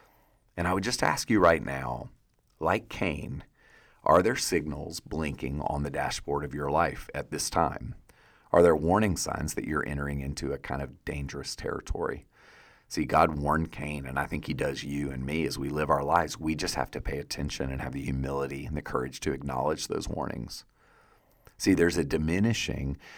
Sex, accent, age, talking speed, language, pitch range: male, American, 40-59, 190 wpm, English, 70-85 Hz